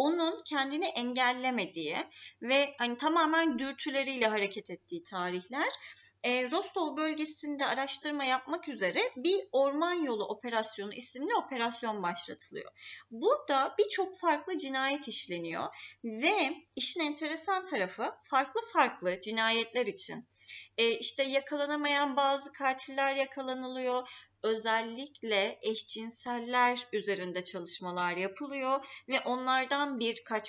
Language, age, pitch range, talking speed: Turkish, 30-49, 220-305 Hz, 95 wpm